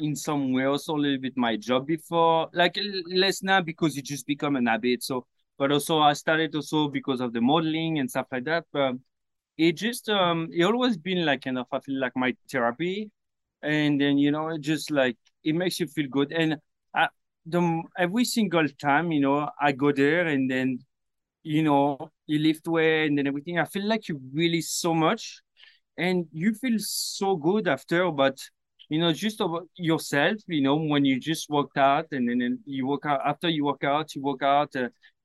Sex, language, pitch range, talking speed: male, English, 140-165 Hz, 195 wpm